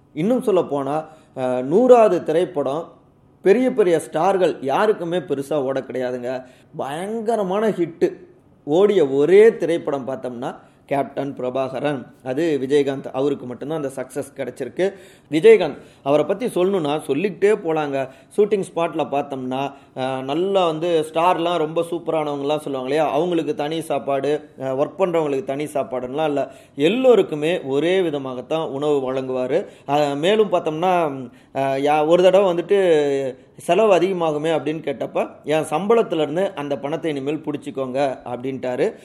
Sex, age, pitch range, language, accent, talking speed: male, 30-49, 135-175 Hz, Tamil, native, 115 wpm